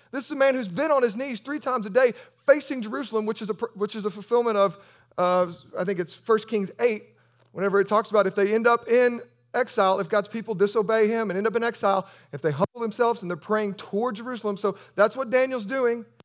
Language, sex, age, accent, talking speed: English, male, 40-59, American, 235 wpm